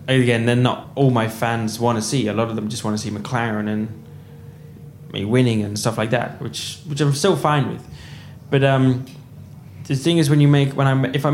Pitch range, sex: 115-140 Hz, male